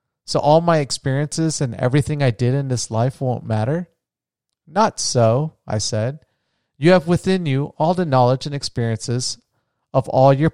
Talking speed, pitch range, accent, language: 165 wpm, 115-145 Hz, American, English